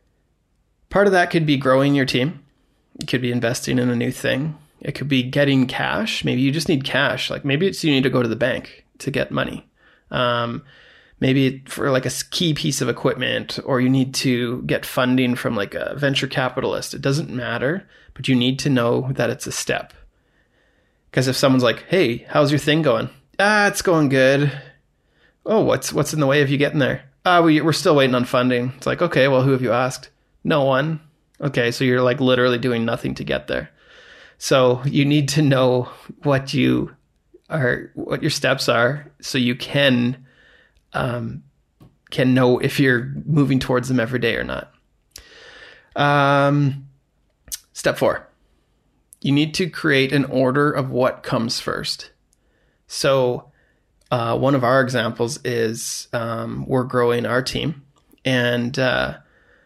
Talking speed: 175 wpm